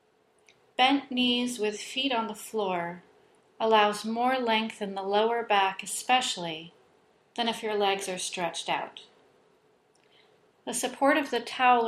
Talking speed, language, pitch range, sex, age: 135 wpm, English, 210-255 Hz, female, 40-59